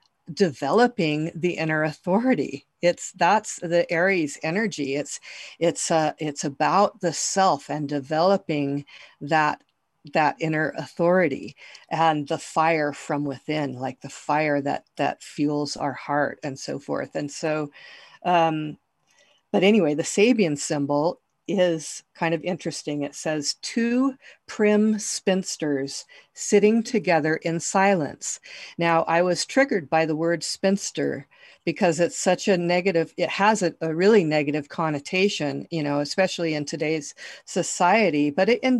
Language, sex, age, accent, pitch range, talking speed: English, female, 50-69, American, 150-190 Hz, 135 wpm